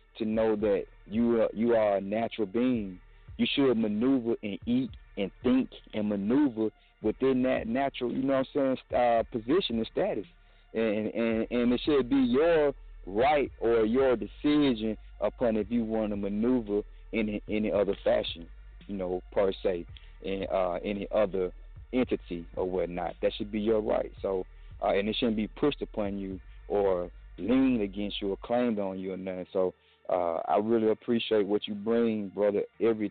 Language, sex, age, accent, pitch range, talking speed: English, male, 30-49, American, 95-115 Hz, 180 wpm